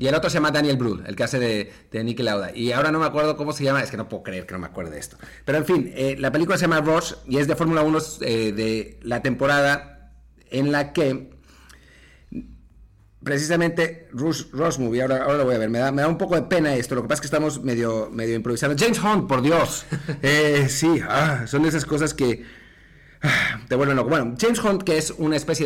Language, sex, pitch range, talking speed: Spanish, male, 120-155 Hz, 240 wpm